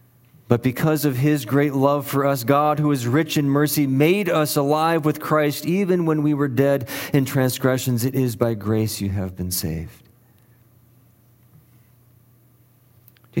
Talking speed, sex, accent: 155 wpm, male, American